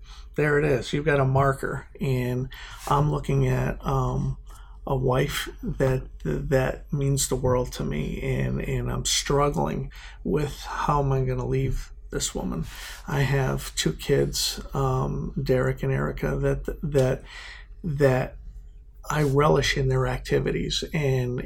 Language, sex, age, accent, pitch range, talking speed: English, male, 50-69, American, 130-150 Hz, 145 wpm